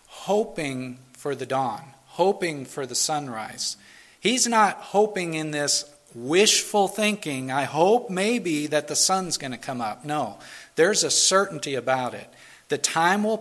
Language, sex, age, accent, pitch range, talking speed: English, male, 40-59, American, 135-185 Hz, 150 wpm